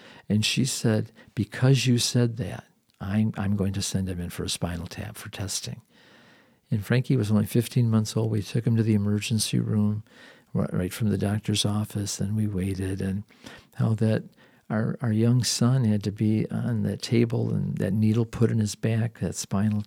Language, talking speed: English, 195 wpm